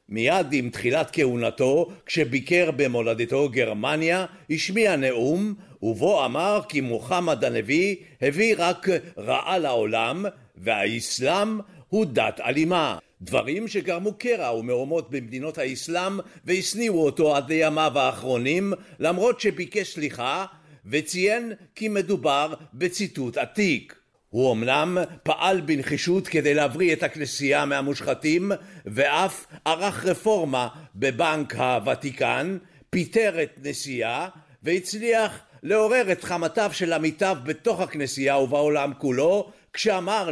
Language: Hebrew